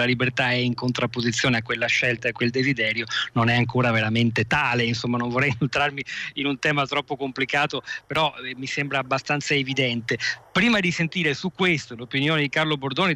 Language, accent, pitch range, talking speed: Italian, native, 120-145 Hz, 180 wpm